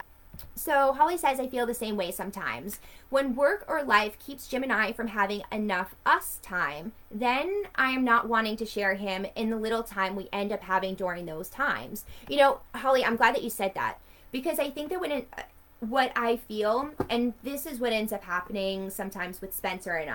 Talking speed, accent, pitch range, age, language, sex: 210 wpm, American, 195-245 Hz, 20-39, English, female